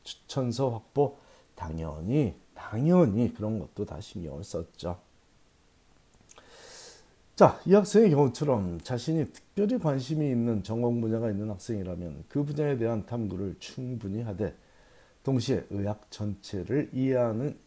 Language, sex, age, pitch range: Korean, male, 40-59, 100-145 Hz